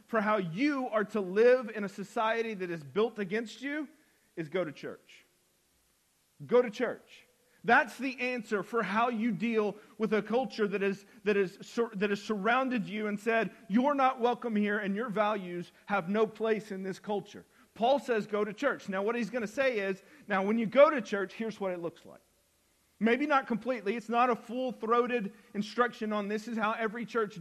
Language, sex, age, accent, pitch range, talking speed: English, male, 40-59, American, 195-240 Hz, 215 wpm